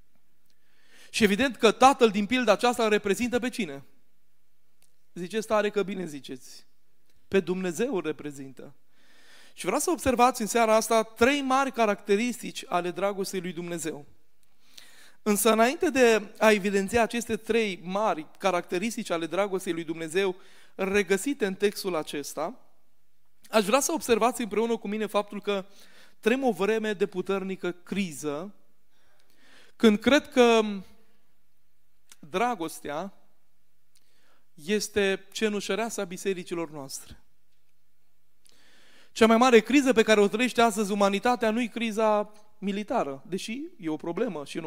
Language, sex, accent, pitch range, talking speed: Romanian, male, native, 180-230 Hz, 130 wpm